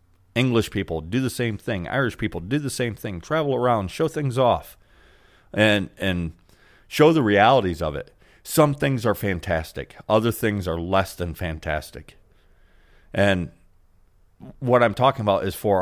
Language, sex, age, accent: English, male, 40-59, American